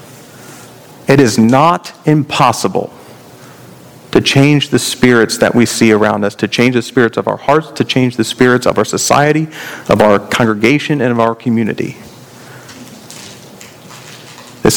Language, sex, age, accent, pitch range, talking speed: English, male, 40-59, American, 115-140 Hz, 140 wpm